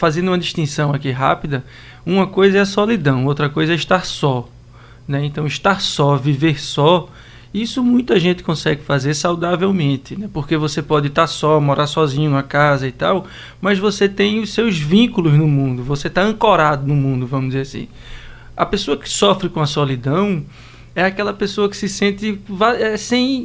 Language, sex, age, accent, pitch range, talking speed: Portuguese, male, 20-39, Brazilian, 150-195 Hz, 175 wpm